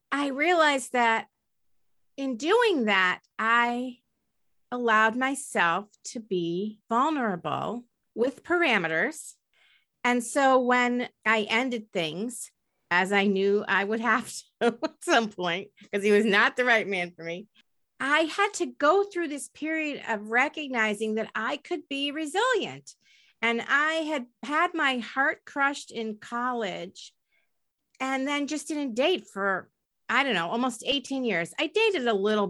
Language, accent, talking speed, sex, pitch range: English, American, 145 wpm, female, 205-265 Hz